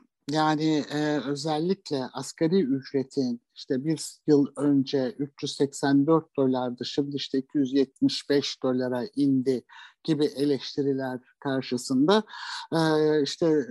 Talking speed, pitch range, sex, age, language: 85 wpm, 135-165 Hz, male, 60-79, Turkish